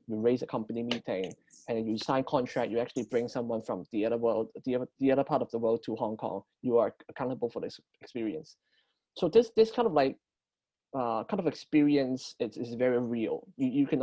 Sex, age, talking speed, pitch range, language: male, 20-39, 205 wpm, 120-155 Hz, English